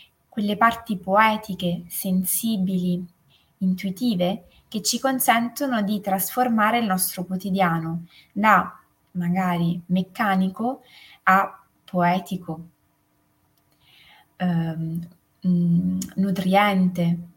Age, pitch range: 20-39, 180-220 Hz